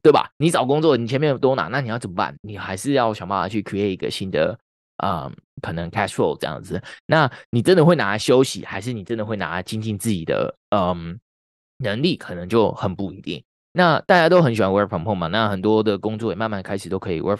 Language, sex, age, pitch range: Chinese, male, 20-39, 100-125 Hz